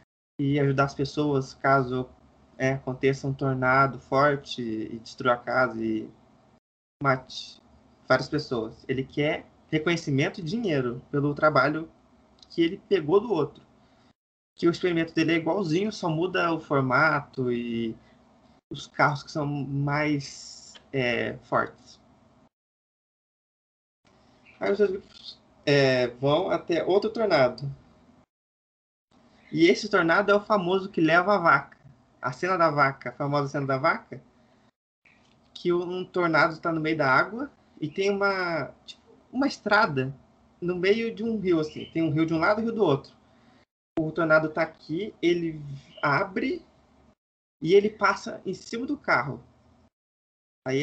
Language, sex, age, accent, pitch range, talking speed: Portuguese, male, 20-39, Brazilian, 135-180 Hz, 135 wpm